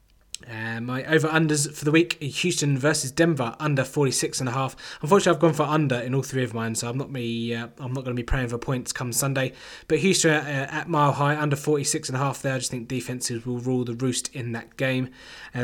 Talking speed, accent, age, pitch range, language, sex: 250 wpm, British, 20-39, 125-150 Hz, English, male